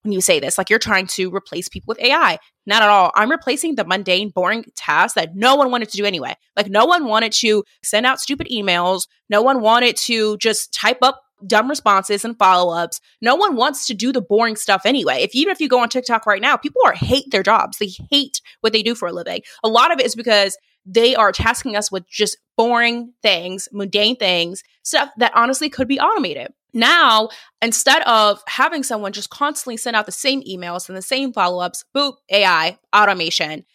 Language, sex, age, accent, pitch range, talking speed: English, female, 20-39, American, 195-255 Hz, 215 wpm